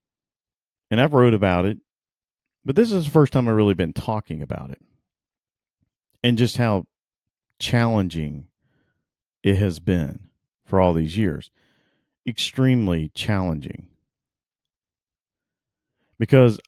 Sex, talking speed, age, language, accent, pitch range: male, 110 wpm, 40-59, English, American, 90-120 Hz